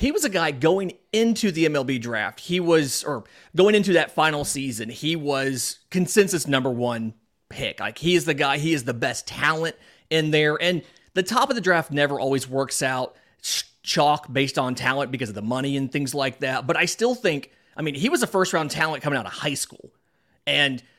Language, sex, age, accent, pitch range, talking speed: English, male, 30-49, American, 130-165 Hz, 215 wpm